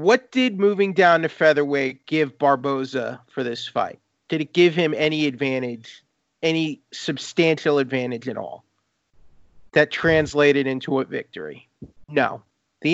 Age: 40-59